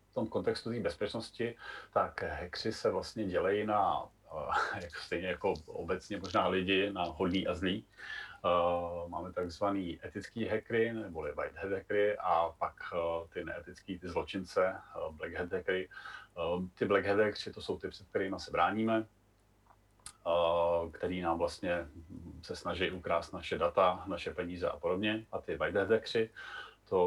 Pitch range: 85-110 Hz